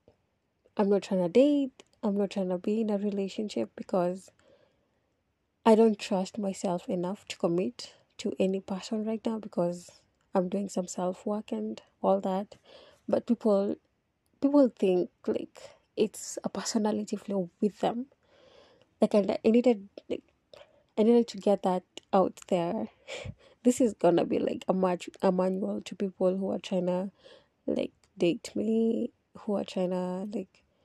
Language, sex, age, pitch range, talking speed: English, female, 20-39, 190-230 Hz, 155 wpm